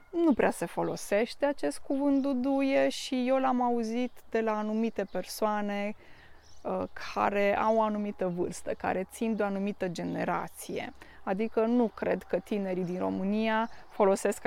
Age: 20-39